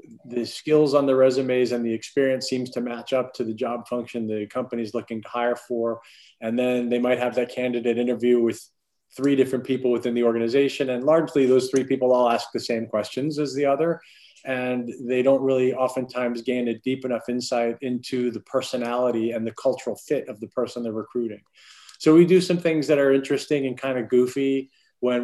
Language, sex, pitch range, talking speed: English, male, 120-140 Hz, 200 wpm